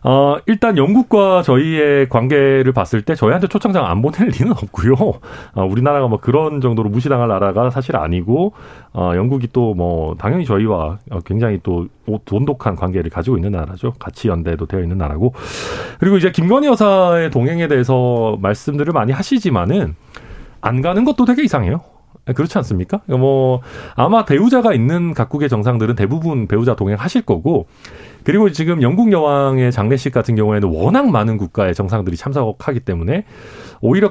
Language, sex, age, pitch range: Korean, male, 40-59, 100-145 Hz